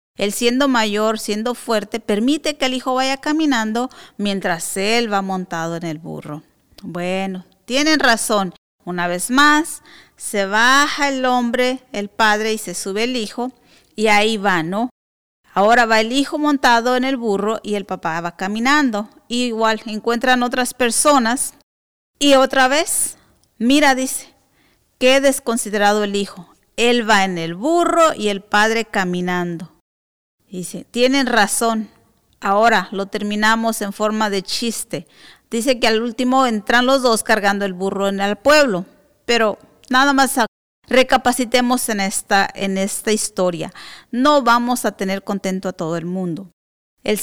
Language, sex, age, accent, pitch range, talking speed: English, female, 40-59, American, 195-255 Hz, 145 wpm